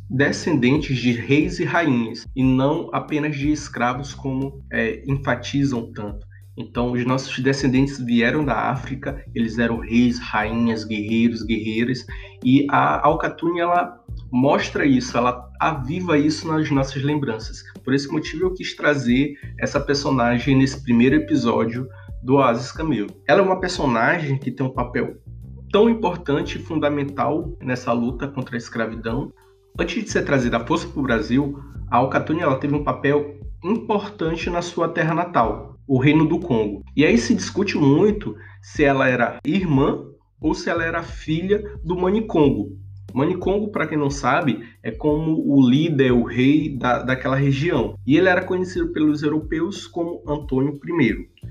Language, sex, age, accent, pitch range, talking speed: Portuguese, male, 20-39, Brazilian, 115-155 Hz, 155 wpm